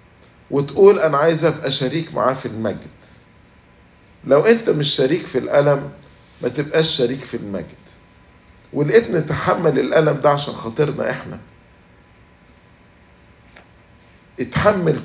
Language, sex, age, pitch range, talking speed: English, male, 50-69, 125-165 Hz, 110 wpm